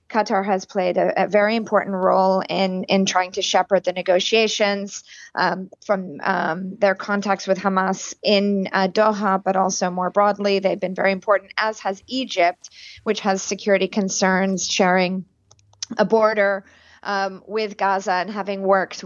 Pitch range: 190-205 Hz